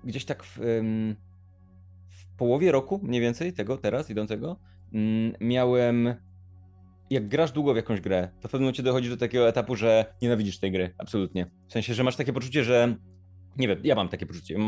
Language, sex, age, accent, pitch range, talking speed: Polish, male, 20-39, native, 95-130 Hz, 180 wpm